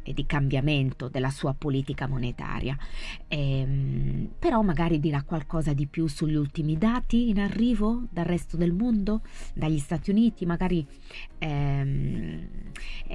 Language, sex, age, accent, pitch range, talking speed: Italian, female, 20-39, native, 140-170 Hz, 130 wpm